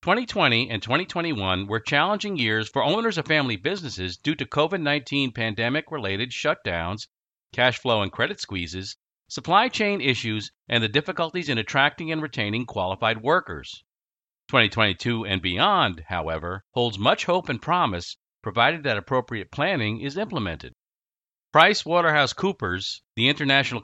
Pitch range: 105-155 Hz